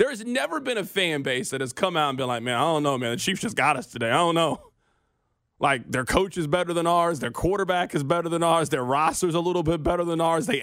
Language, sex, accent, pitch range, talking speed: English, male, American, 170-255 Hz, 290 wpm